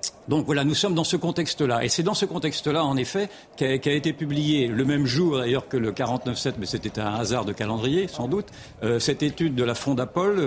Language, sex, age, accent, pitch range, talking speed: French, male, 50-69, French, 125-160 Hz, 220 wpm